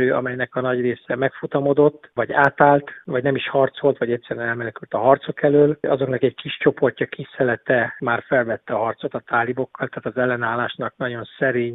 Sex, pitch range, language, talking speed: male, 125-145 Hz, Hungarian, 175 wpm